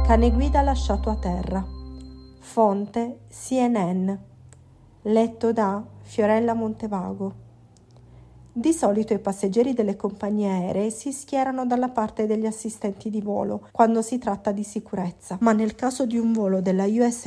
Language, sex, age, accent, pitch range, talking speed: Italian, female, 40-59, native, 200-235 Hz, 135 wpm